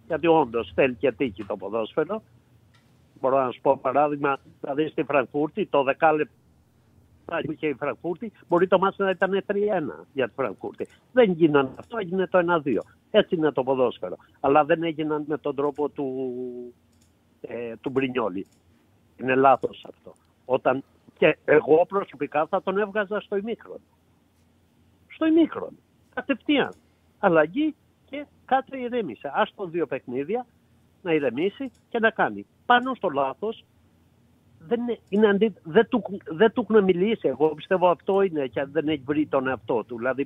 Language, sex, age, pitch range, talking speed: Greek, male, 60-79, 140-220 Hz, 150 wpm